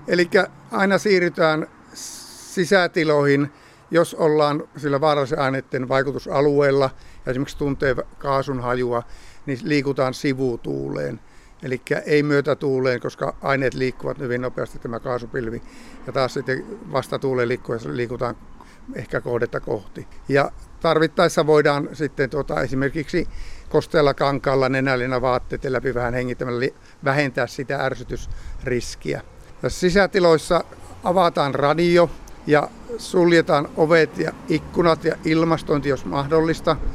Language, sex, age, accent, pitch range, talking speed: Finnish, male, 60-79, native, 130-160 Hz, 110 wpm